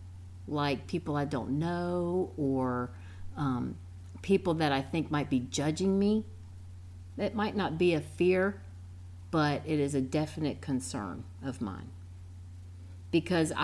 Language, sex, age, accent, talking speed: English, female, 50-69, American, 130 wpm